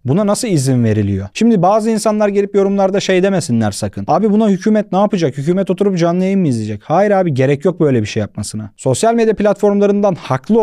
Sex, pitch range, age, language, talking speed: male, 140-205 Hz, 30-49, Turkish, 200 wpm